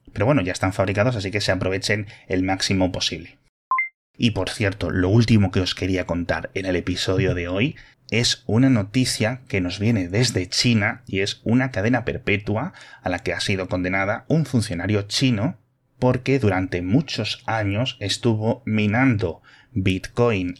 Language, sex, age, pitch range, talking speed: Spanish, male, 30-49, 95-115 Hz, 160 wpm